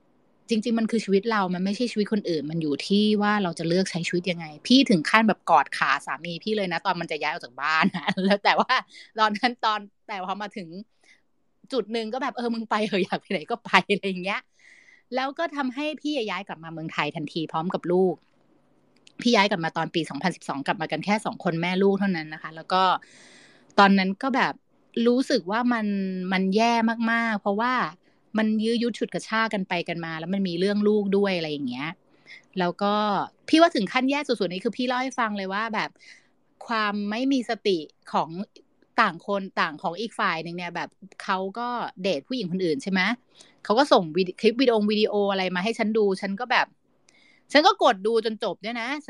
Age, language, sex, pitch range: 30-49, Thai, female, 185-240 Hz